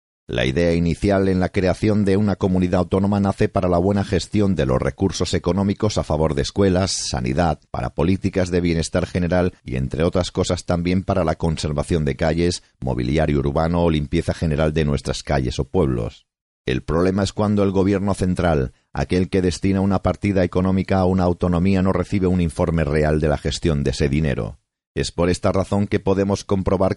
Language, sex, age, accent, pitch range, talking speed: Spanish, male, 40-59, Spanish, 80-95 Hz, 185 wpm